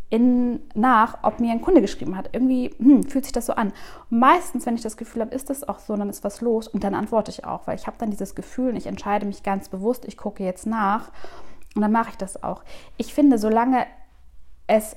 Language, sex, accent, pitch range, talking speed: German, female, German, 200-250 Hz, 235 wpm